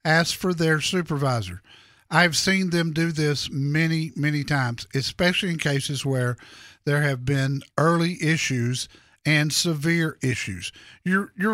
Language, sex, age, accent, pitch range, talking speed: English, male, 50-69, American, 145-180 Hz, 135 wpm